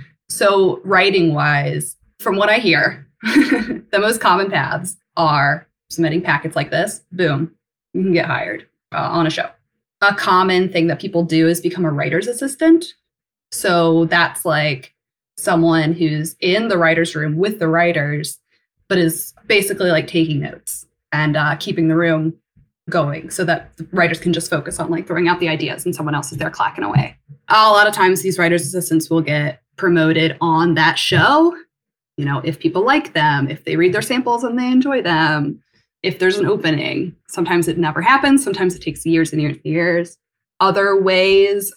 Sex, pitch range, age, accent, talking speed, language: female, 155-185 Hz, 20-39, American, 180 wpm, English